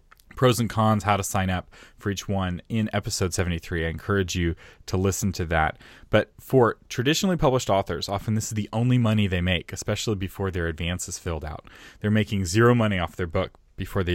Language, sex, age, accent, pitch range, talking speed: English, male, 30-49, American, 95-120 Hz, 210 wpm